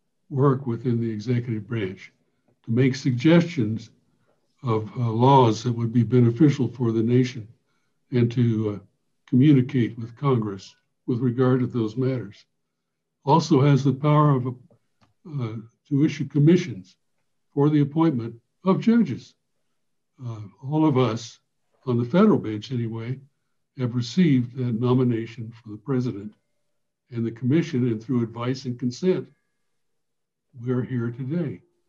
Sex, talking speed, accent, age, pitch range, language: male, 135 wpm, American, 60-79, 115-135 Hz, English